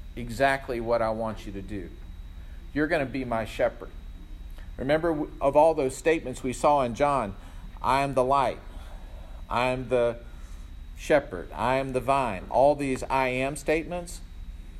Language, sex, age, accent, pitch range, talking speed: English, male, 50-69, American, 95-135 Hz, 160 wpm